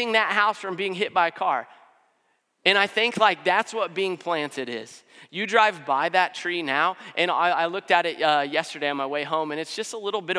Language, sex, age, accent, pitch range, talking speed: English, male, 30-49, American, 155-200 Hz, 235 wpm